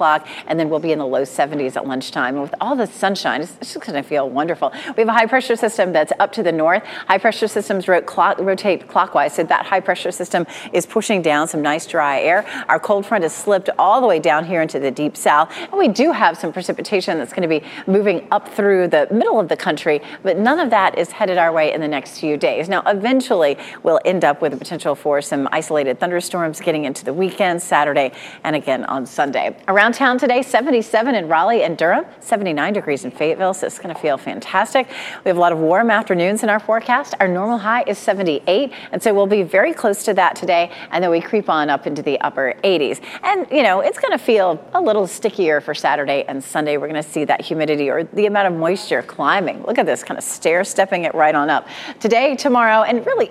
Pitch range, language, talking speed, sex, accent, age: 160-230 Hz, English, 235 wpm, female, American, 40-59